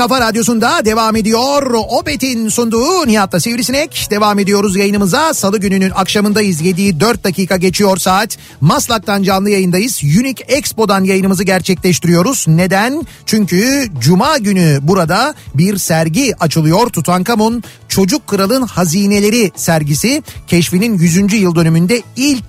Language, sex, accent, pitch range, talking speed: Turkish, male, native, 165-210 Hz, 115 wpm